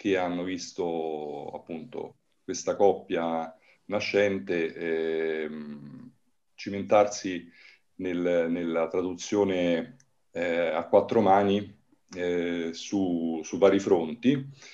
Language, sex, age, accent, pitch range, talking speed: Italian, male, 40-59, native, 85-105 Hz, 85 wpm